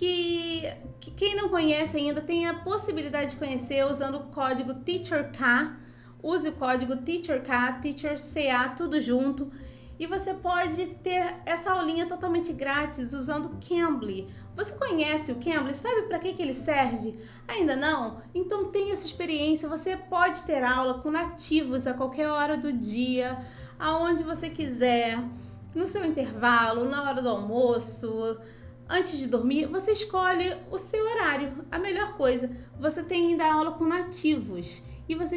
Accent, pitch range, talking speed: Brazilian, 265-345 Hz, 150 wpm